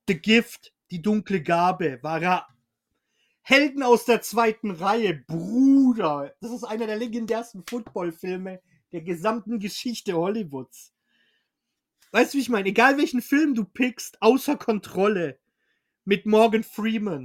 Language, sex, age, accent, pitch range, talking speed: German, male, 40-59, German, 180-235 Hz, 130 wpm